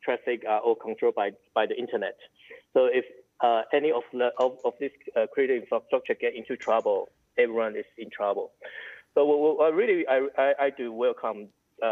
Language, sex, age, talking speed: English, male, 20-39, 200 wpm